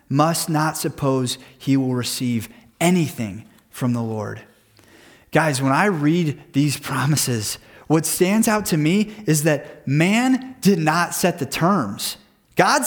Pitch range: 140-205 Hz